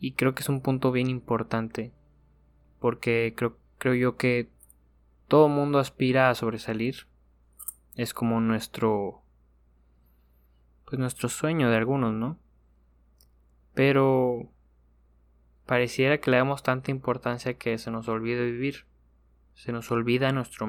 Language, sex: Spanish, male